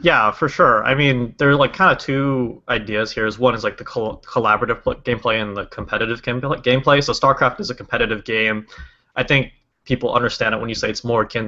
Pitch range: 110-135 Hz